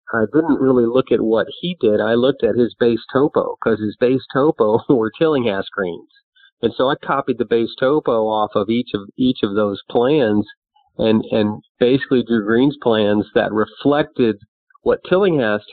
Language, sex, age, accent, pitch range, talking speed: English, male, 40-59, American, 105-125 Hz, 175 wpm